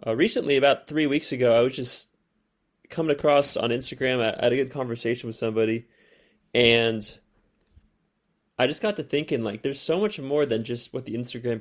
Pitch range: 115-135 Hz